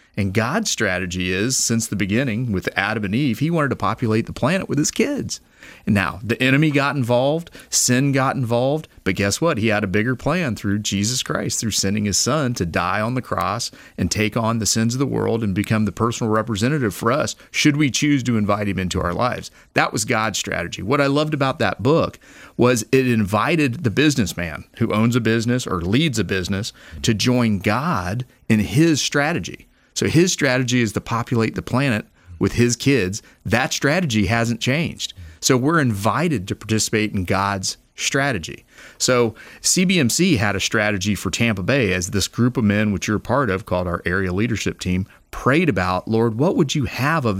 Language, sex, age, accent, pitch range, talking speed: English, male, 40-59, American, 100-130 Hz, 195 wpm